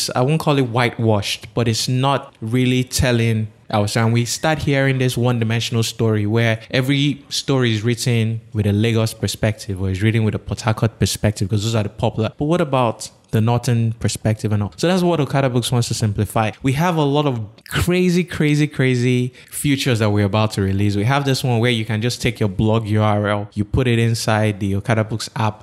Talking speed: 210 wpm